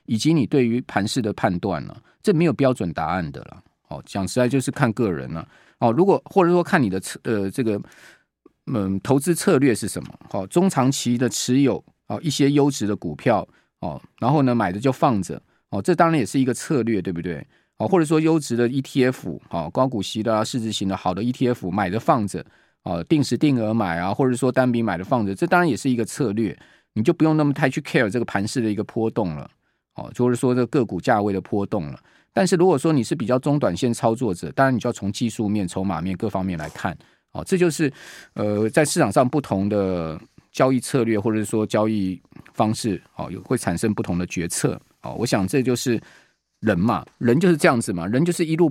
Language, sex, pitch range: Chinese, male, 105-150 Hz